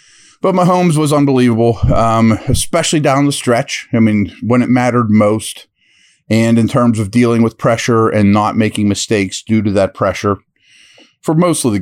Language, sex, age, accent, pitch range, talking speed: English, male, 40-59, American, 105-125 Hz, 175 wpm